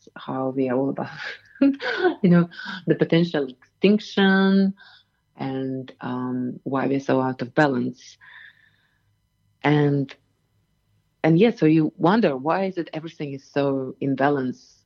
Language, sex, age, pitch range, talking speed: English, female, 30-49, 125-155 Hz, 130 wpm